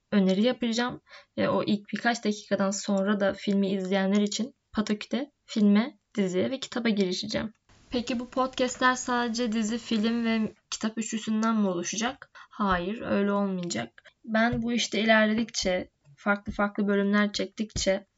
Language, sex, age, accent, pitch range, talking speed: Turkish, female, 10-29, native, 195-225 Hz, 130 wpm